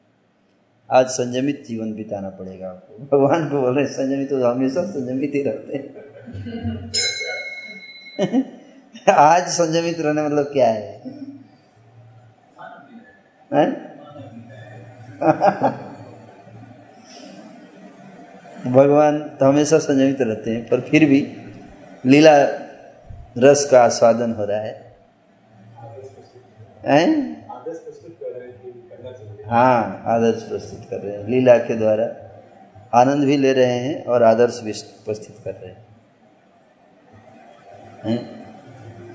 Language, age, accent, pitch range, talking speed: Hindi, 20-39, native, 115-155 Hz, 100 wpm